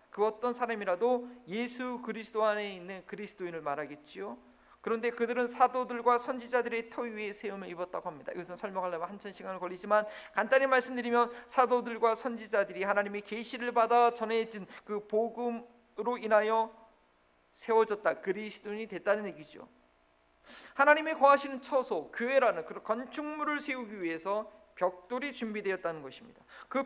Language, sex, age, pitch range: Korean, male, 40-59, 200-250 Hz